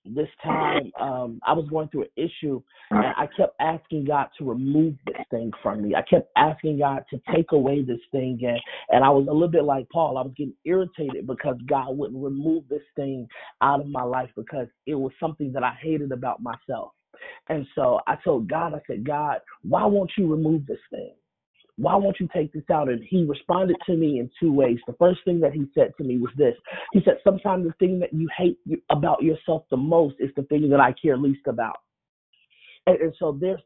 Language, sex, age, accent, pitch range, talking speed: English, male, 30-49, American, 140-170 Hz, 220 wpm